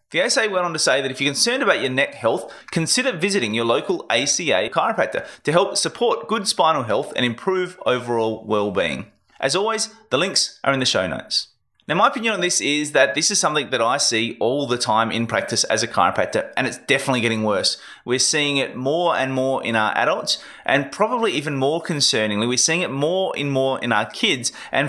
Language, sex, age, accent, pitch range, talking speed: English, male, 30-49, Australian, 115-145 Hz, 215 wpm